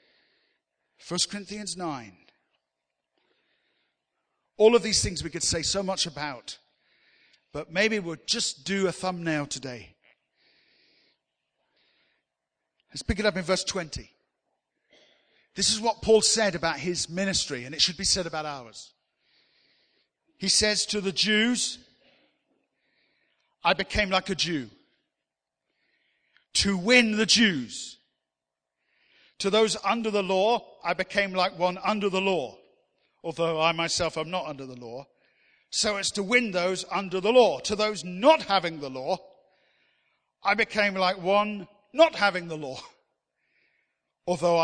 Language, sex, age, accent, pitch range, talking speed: English, male, 50-69, British, 155-215 Hz, 135 wpm